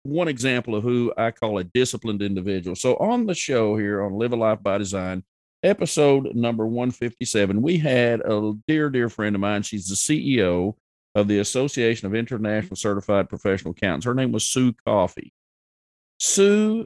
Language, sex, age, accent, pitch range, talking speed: English, male, 50-69, American, 105-135 Hz, 175 wpm